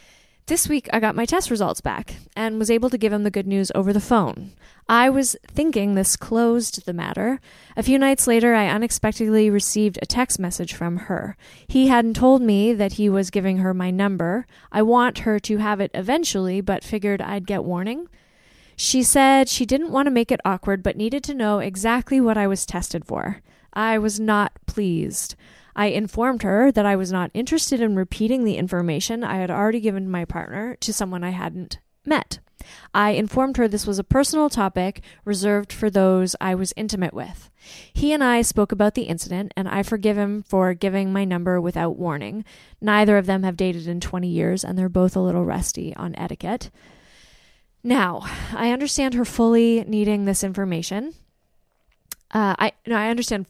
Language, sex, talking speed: English, female, 190 wpm